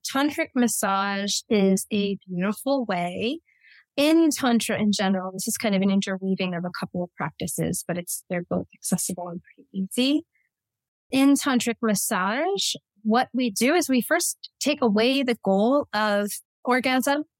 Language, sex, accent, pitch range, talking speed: English, female, American, 200-250 Hz, 150 wpm